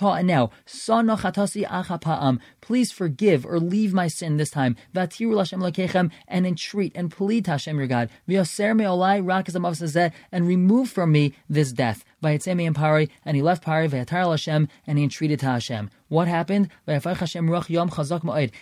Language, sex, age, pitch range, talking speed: English, male, 30-49, 160-205 Hz, 105 wpm